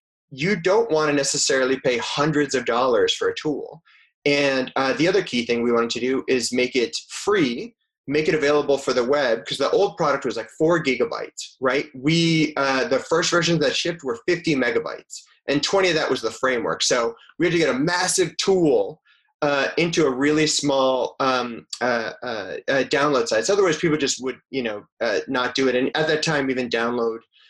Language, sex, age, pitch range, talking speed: English, male, 30-49, 125-175 Hz, 205 wpm